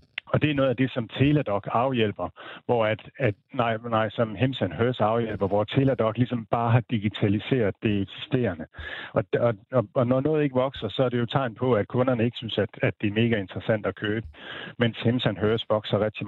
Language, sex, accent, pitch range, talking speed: Danish, male, native, 105-125 Hz, 205 wpm